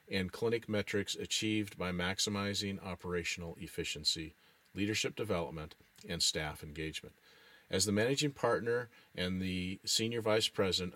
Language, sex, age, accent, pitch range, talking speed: English, male, 40-59, American, 90-105 Hz, 120 wpm